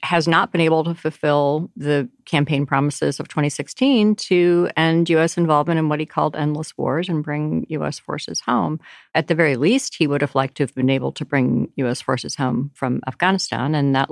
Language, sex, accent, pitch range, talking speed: English, female, American, 125-165 Hz, 200 wpm